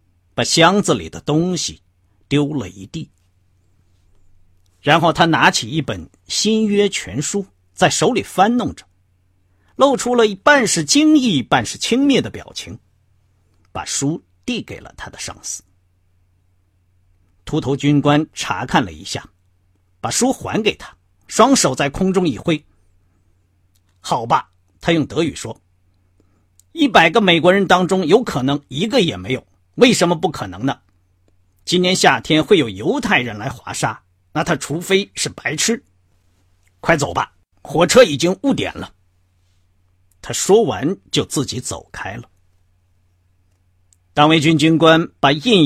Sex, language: male, Chinese